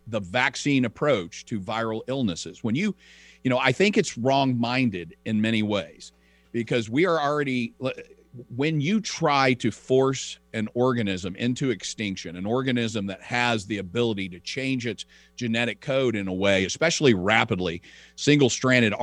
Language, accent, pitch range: English, American, 100-125 Hz